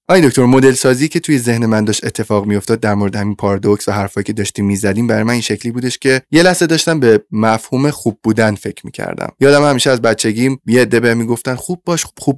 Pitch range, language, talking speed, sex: 110-130 Hz, Persian, 230 wpm, male